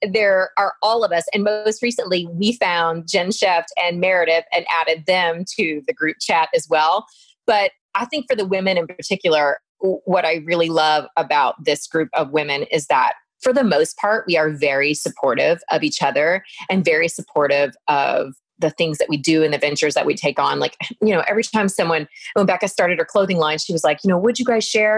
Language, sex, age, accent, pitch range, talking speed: English, female, 30-49, American, 160-235 Hz, 215 wpm